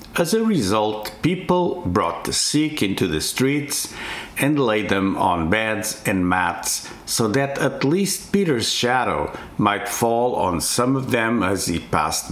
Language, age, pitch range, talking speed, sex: English, 60-79, 90-140 Hz, 155 wpm, male